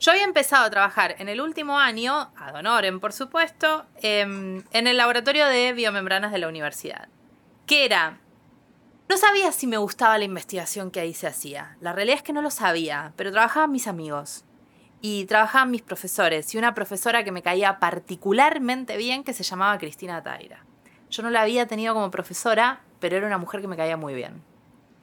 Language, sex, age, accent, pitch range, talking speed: Spanish, female, 20-39, Argentinian, 185-265 Hz, 185 wpm